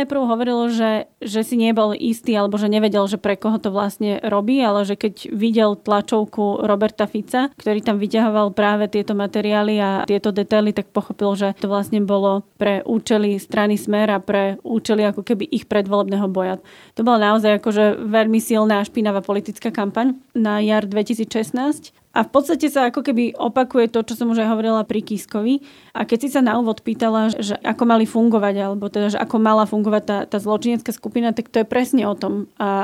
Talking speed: 190 wpm